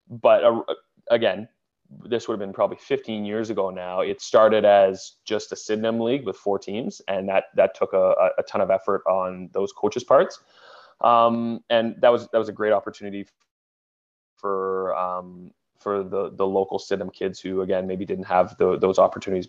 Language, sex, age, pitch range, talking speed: English, male, 20-39, 95-110 Hz, 185 wpm